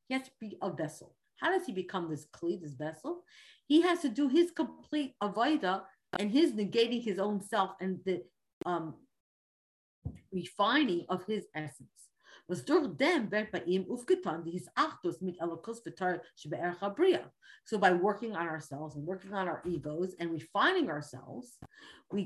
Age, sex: 50-69, female